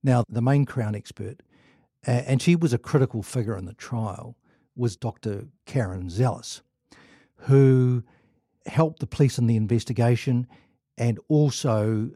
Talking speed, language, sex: 135 wpm, English, male